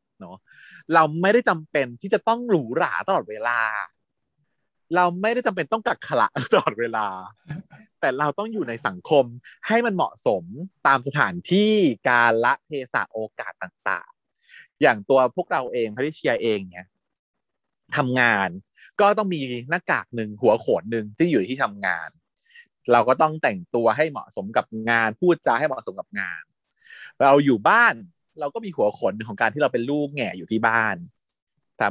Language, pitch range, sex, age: Thai, 120-185 Hz, male, 30-49